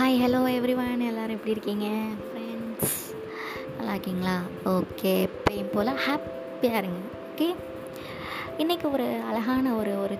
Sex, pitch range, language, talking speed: male, 180-230 Hz, Tamil, 110 wpm